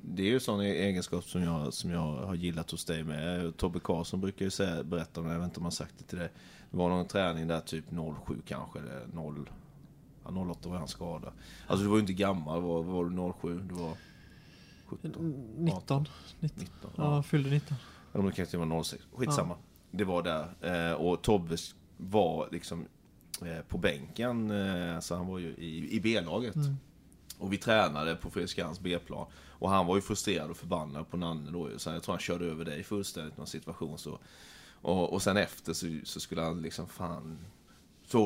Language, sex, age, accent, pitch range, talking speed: Swedish, male, 30-49, native, 85-105 Hz, 200 wpm